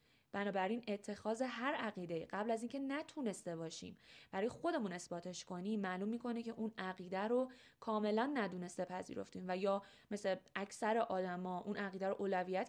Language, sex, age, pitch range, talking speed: Persian, female, 20-39, 185-240 Hz, 145 wpm